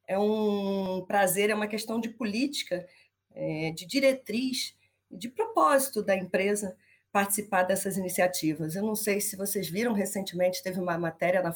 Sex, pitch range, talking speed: female, 195-240 Hz, 150 wpm